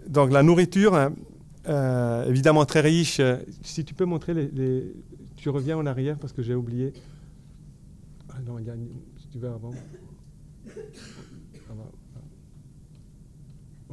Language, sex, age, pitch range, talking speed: French, male, 40-59, 125-150 Hz, 140 wpm